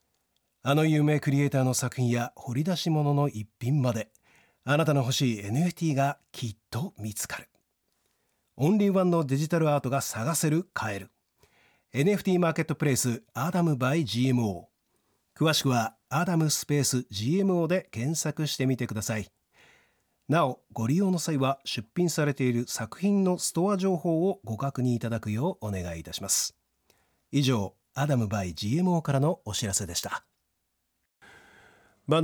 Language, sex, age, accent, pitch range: Japanese, male, 40-59, native, 100-150 Hz